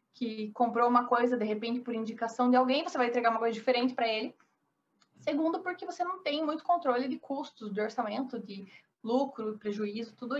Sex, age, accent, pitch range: female, 20-39, Brazilian, 235-290 Hz